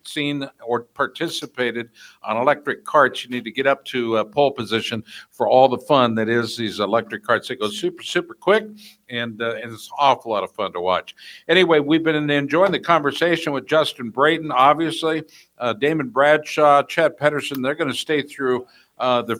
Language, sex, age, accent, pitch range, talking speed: English, male, 60-79, American, 130-165 Hz, 190 wpm